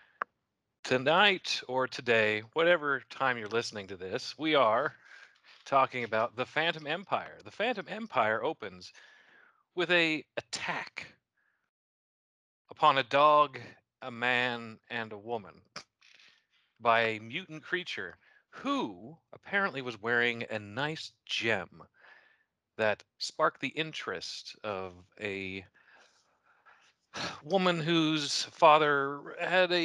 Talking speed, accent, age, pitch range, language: 105 wpm, American, 40-59, 110-150 Hz, English